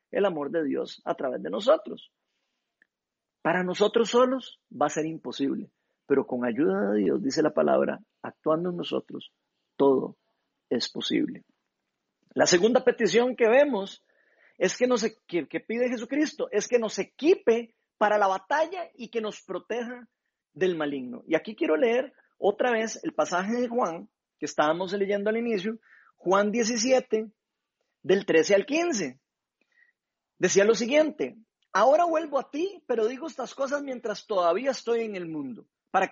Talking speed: 155 wpm